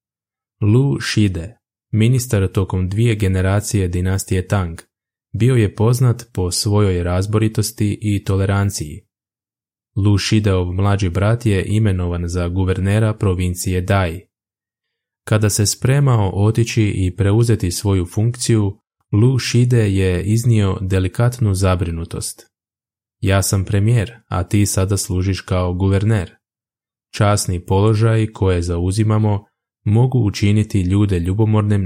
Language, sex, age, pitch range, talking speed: Croatian, male, 20-39, 95-110 Hz, 105 wpm